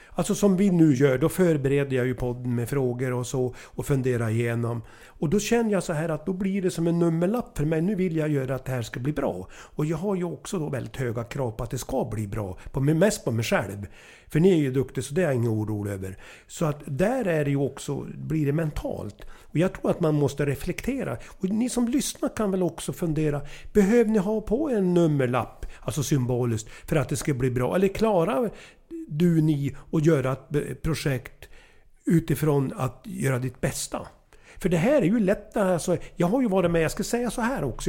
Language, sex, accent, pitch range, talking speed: English, male, Swedish, 130-185 Hz, 230 wpm